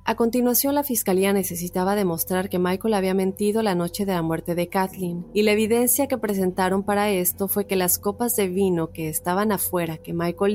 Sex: female